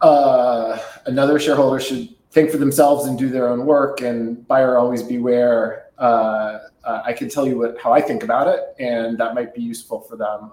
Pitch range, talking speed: 110-130 Hz, 195 wpm